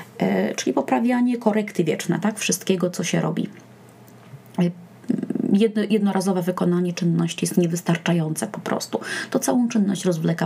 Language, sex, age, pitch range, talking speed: Polish, female, 20-39, 180-220 Hz, 120 wpm